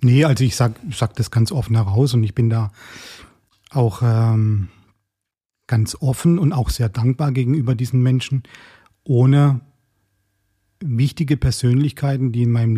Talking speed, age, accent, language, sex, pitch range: 140 wpm, 40-59, German, German, male, 115-135 Hz